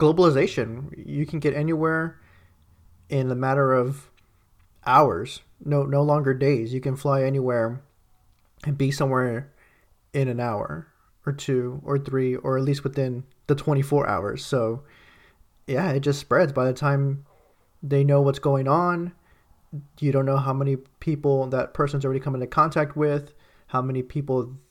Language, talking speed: English, 155 wpm